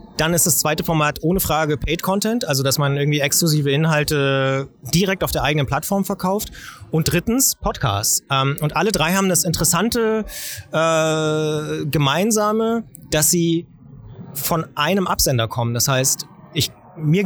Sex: male